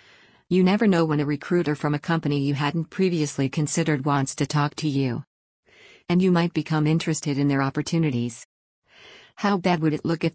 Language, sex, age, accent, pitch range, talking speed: English, female, 50-69, American, 140-165 Hz, 185 wpm